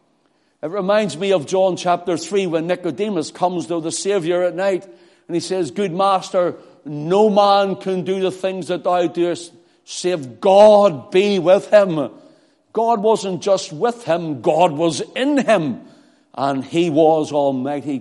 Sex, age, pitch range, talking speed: male, 60-79, 145-190 Hz, 155 wpm